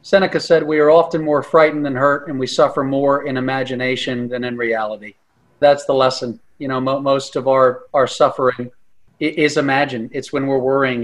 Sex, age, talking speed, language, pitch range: male, 40-59, 185 wpm, English, 125-145 Hz